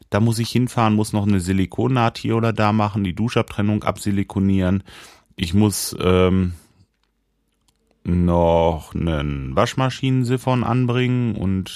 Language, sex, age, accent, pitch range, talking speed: German, male, 30-49, German, 90-115 Hz, 115 wpm